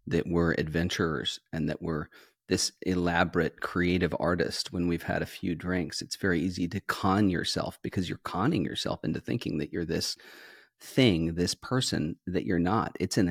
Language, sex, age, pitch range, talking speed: English, male, 40-59, 90-120 Hz, 175 wpm